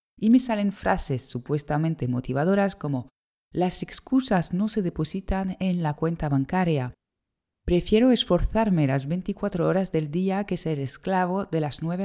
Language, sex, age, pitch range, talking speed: Spanish, female, 20-39, 145-190 Hz, 145 wpm